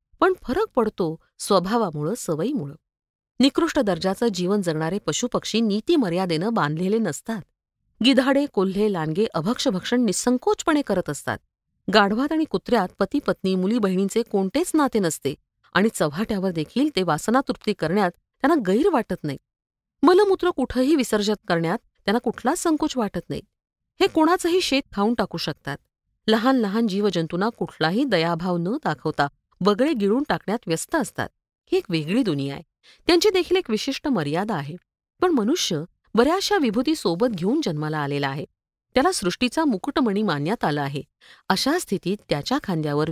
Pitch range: 180-275 Hz